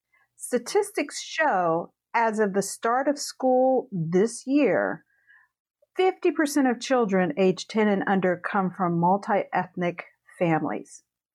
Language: English